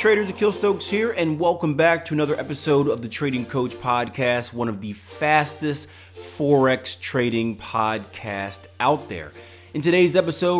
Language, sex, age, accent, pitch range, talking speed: English, male, 30-49, American, 105-140 Hz, 155 wpm